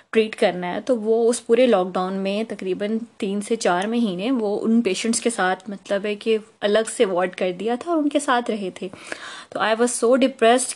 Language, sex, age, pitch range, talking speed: Urdu, female, 20-39, 200-235 Hz, 225 wpm